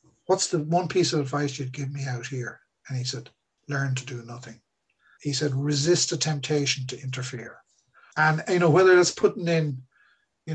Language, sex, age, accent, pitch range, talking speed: English, male, 60-79, Irish, 130-170 Hz, 190 wpm